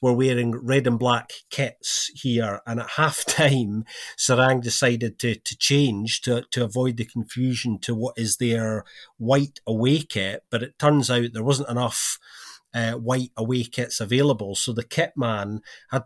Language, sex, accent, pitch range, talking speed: English, male, British, 115-140 Hz, 170 wpm